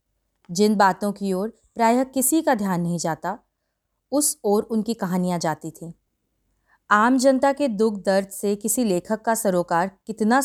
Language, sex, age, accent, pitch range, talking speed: Hindi, female, 30-49, native, 185-250 Hz, 155 wpm